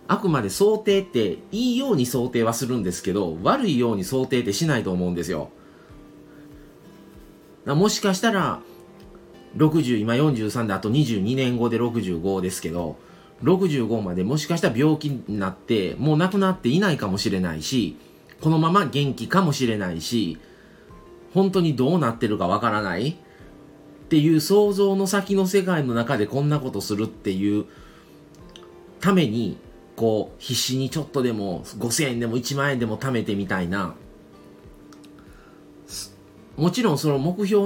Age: 30-49